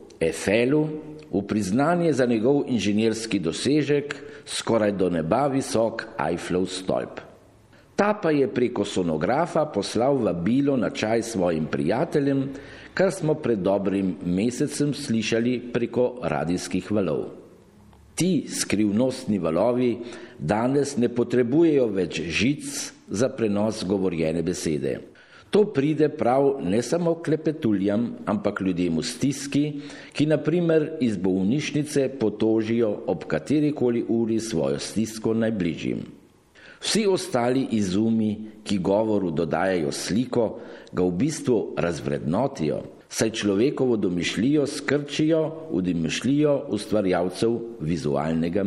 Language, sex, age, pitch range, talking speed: Italian, male, 50-69, 95-140 Hz, 105 wpm